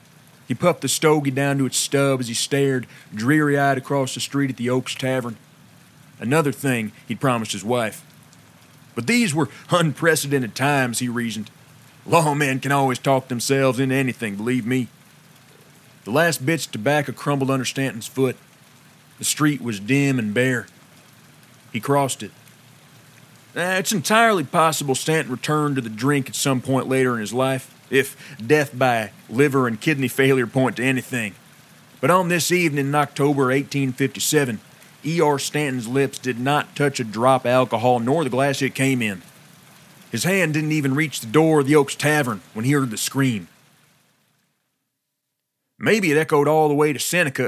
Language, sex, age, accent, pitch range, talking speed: English, male, 40-59, American, 130-150 Hz, 165 wpm